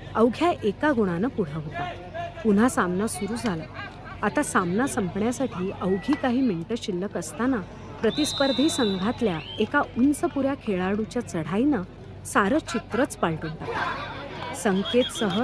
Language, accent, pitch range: Marathi, native, 175-240 Hz